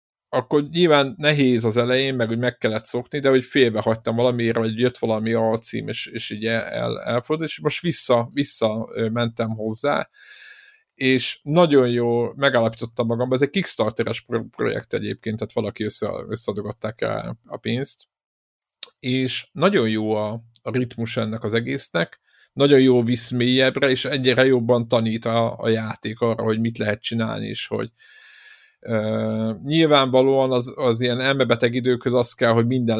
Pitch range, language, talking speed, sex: 115-140 Hz, Hungarian, 155 wpm, male